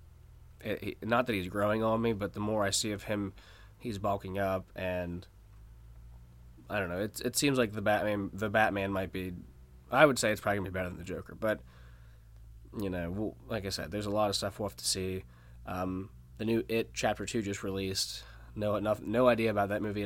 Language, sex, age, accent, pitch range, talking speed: English, male, 20-39, American, 90-110 Hz, 220 wpm